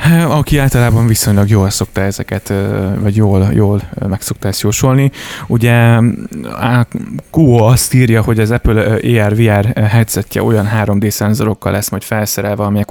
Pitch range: 100-115 Hz